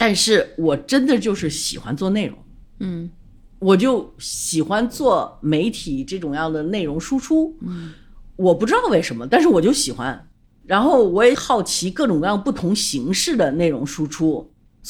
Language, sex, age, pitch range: Chinese, female, 50-69, 165-270 Hz